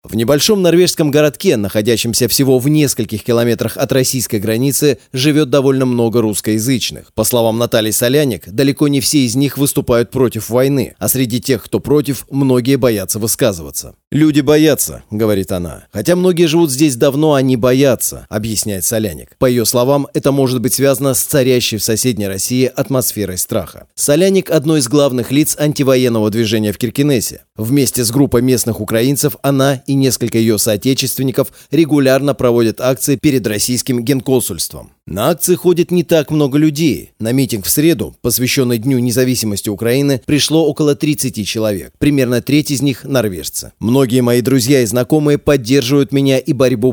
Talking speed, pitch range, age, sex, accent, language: 160 wpm, 115-145 Hz, 30-49, male, native, Russian